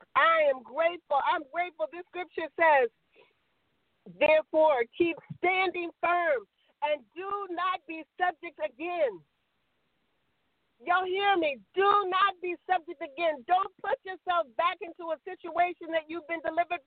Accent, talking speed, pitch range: American, 130 wpm, 300-355 Hz